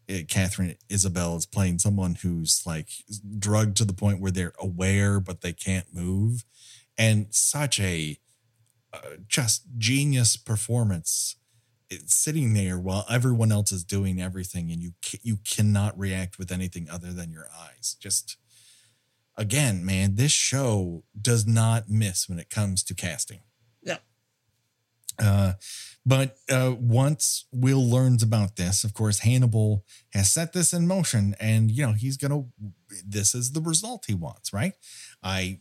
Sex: male